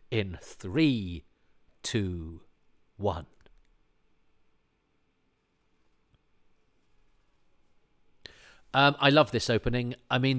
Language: English